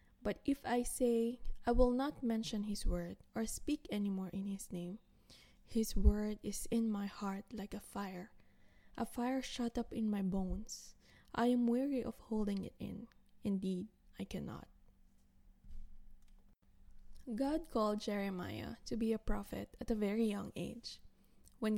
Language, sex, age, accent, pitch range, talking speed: English, female, 20-39, Filipino, 195-235 Hz, 155 wpm